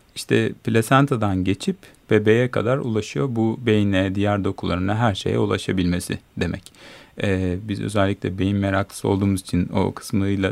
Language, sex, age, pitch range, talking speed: Turkish, male, 40-59, 95-130 Hz, 130 wpm